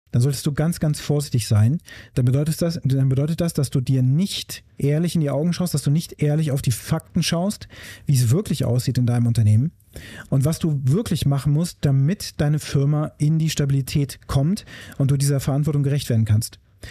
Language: German